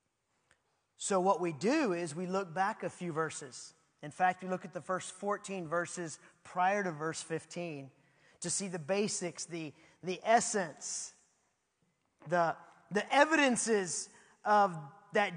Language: English